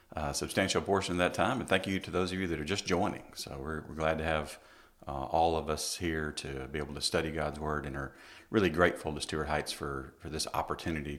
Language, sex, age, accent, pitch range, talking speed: English, male, 40-59, American, 75-90 Hz, 245 wpm